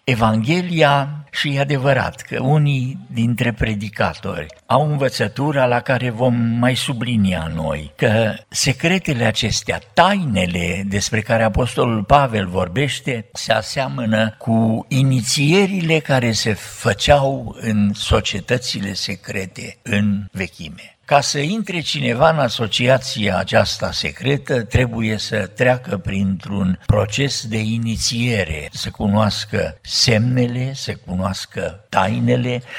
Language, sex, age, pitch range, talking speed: Romanian, male, 60-79, 100-135 Hz, 105 wpm